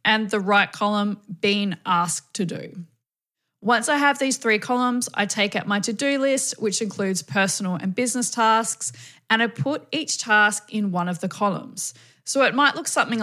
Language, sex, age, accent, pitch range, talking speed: English, female, 20-39, Australian, 190-245 Hz, 185 wpm